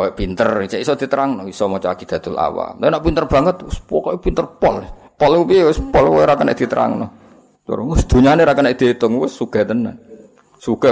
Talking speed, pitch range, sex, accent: 185 wpm, 105-145 Hz, male, native